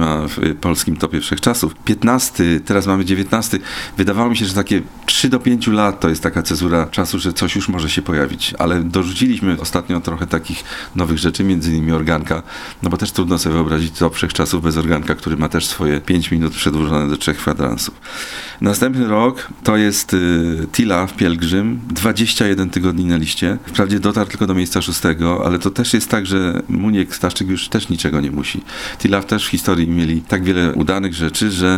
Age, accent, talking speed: 40-59, native, 190 wpm